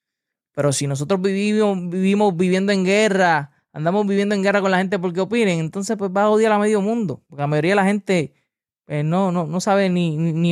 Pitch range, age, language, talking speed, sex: 150-190 Hz, 20-39, Spanish, 215 wpm, male